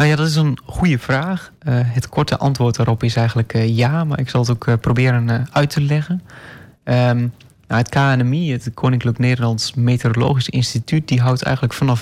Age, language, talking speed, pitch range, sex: 20-39, Dutch, 200 wpm, 120-135 Hz, male